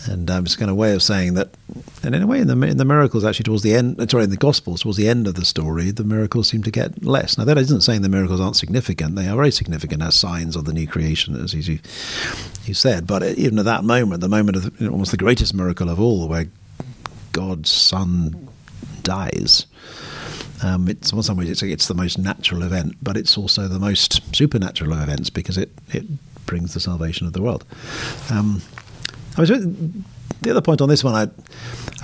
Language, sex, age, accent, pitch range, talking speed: English, male, 50-69, British, 95-125 Hz, 215 wpm